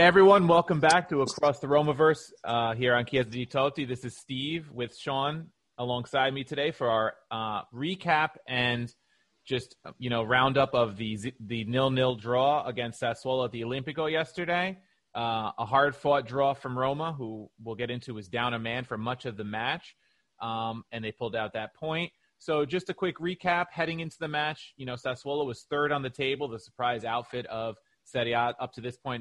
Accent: American